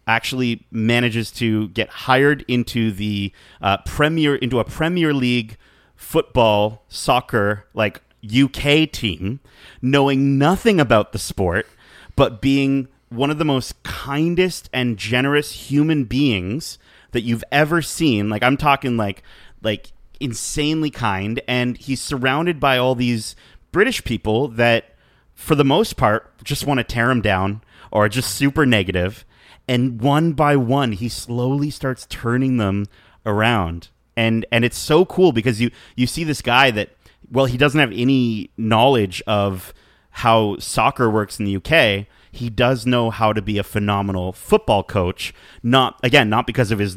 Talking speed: 155 wpm